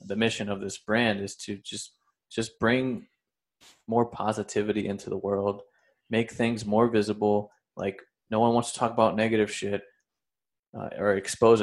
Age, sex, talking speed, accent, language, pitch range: 20-39, male, 160 wpm, American, English, 100-110 Hz